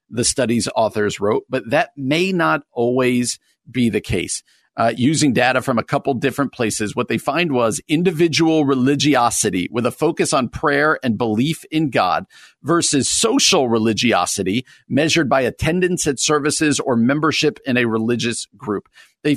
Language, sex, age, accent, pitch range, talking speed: English, male, 50-69, American, 115-155 Hz, 155 wpm